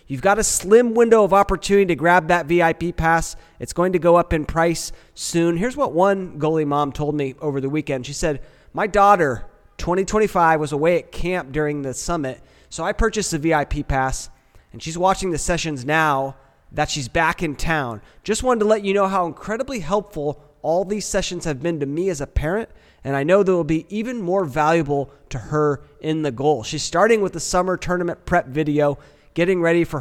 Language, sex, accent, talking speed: English, male, American, 205 wpm